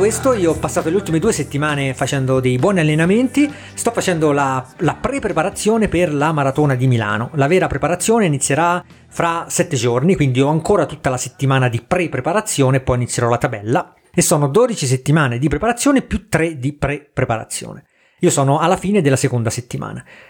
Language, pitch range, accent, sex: Italian, 130-165 Hz, native, male